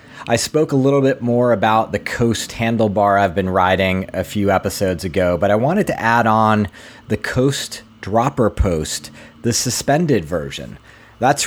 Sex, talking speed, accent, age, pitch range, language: male, 160 wpm, American, 30-49, 100-130 Hz, English